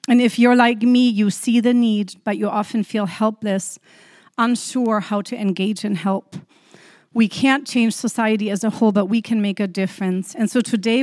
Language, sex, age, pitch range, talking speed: English, female, 40-59, 195-235 Hz, 195 wpm